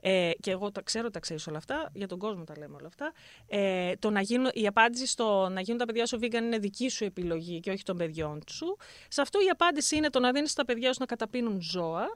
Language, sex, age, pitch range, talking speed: Greek, female, 30-49, 190-290 Hz, 255 wpm